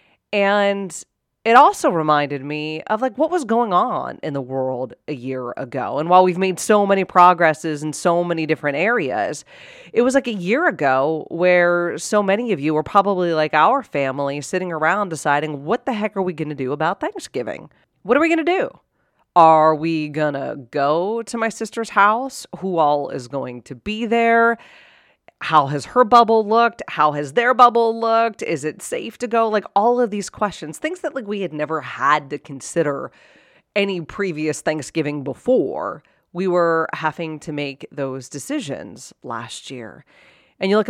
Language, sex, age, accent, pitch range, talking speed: English, female, 30-49, American, 145-205 Hz, 185 wpm